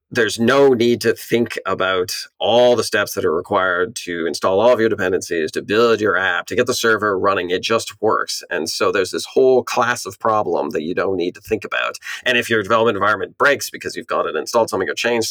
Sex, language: male, English